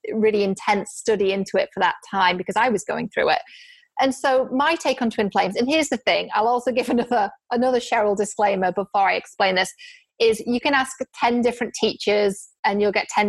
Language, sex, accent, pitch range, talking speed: English, female, British, 205-260 Hz, 210 wpm